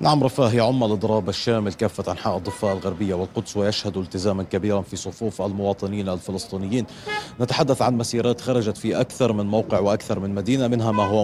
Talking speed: 165 wpm